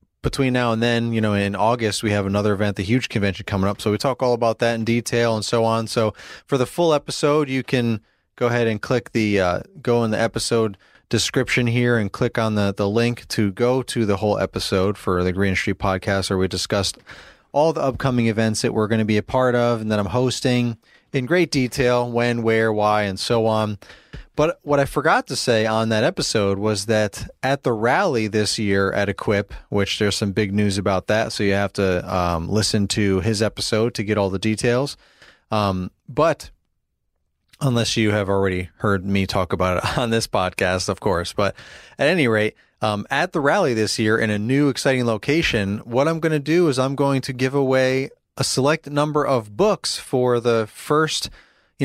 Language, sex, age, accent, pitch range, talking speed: English, male, 30-49, American, 100-125 Hz, 210 wpm